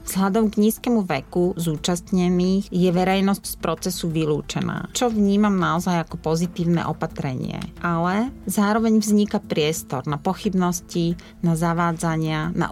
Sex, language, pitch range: female, Slovak, 160-190 Hz